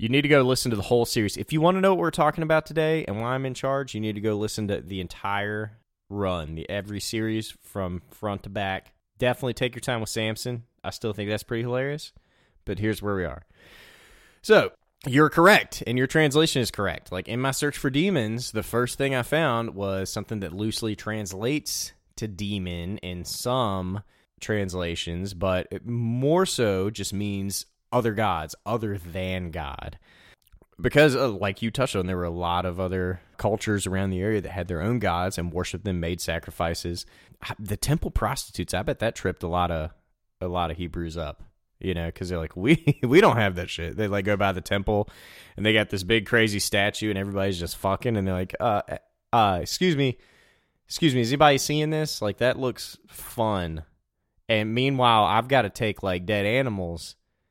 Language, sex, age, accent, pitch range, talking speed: English, male, 20-39, American, 95-125 Hz, 200 wpm